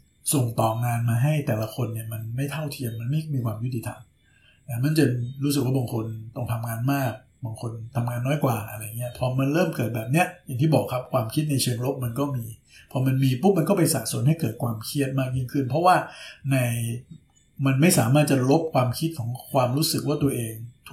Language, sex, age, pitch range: Thai, male, 60-79, 120-145 Hz